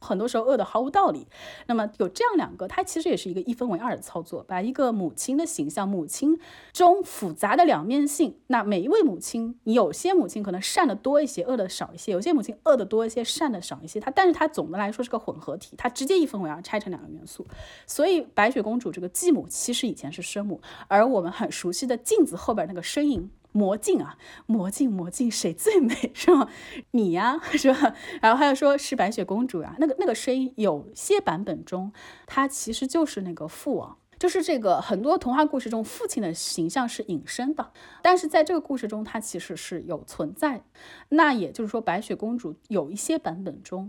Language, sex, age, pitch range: Chinese, female, 30-49, 200-310 Hz